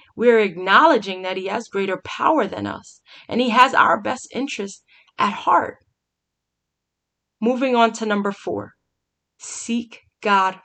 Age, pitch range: 20-39, 195-245 Hz